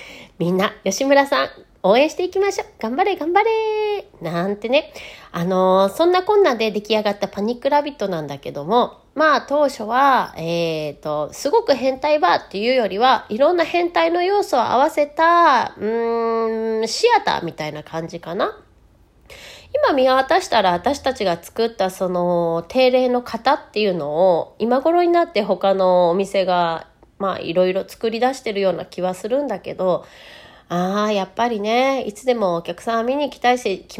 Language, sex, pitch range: Japanese, female, 185-290 Hz